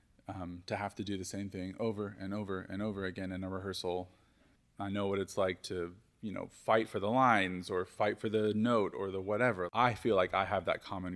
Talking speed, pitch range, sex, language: 235 wpm, 95-110 Hz, male, English